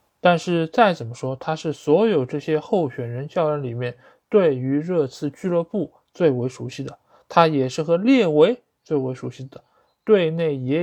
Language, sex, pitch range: Chinese, male, 130-180 Hz